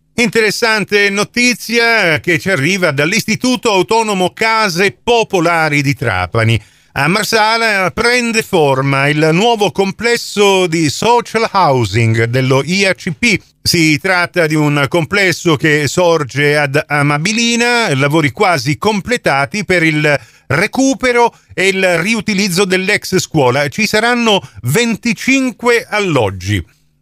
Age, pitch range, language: 40-59, 135-205 Hz, Italian